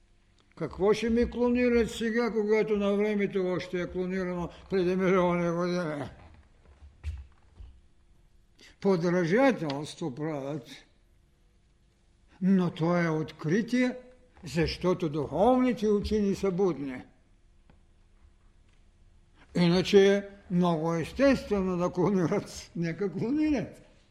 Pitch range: 150-220 Hz